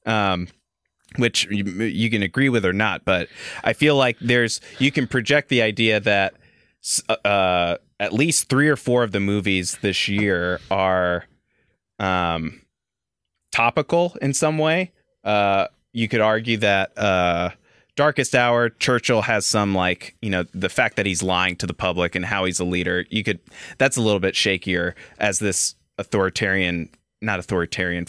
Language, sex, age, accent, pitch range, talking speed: English, male, 20-39, American, 90-115 Hz, 160 wpm